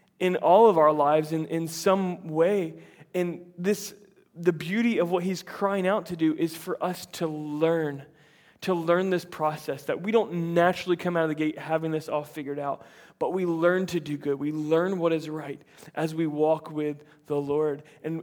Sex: male